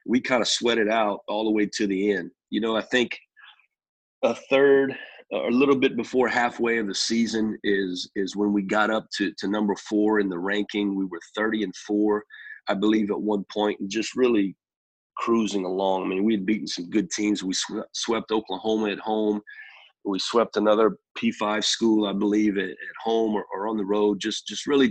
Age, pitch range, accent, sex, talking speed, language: 40-59, 100-110 Hz, American, male, 210 wpm, English